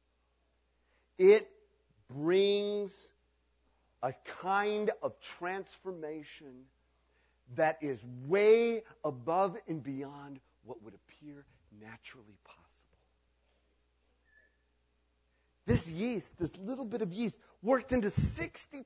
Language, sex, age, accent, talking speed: English, male, 50-69, American, 85 wpm